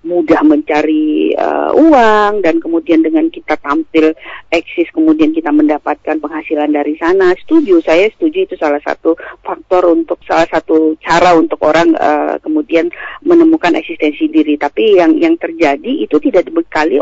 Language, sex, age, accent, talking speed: Indonesian, female, 40-59, native, 145 wpm